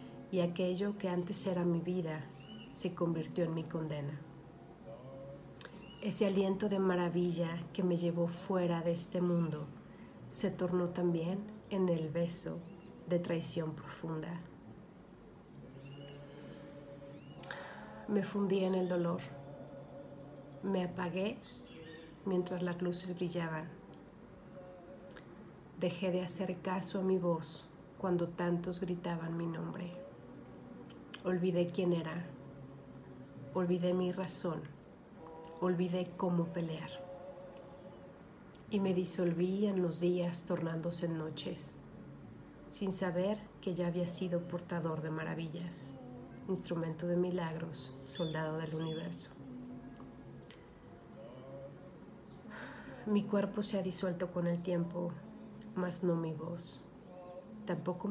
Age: 50-69